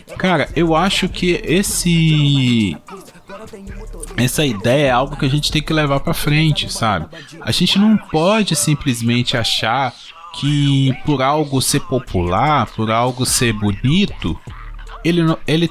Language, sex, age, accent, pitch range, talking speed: Portuguese, male, 20-39, Brazilian, 135-200 Hz, 135 wpm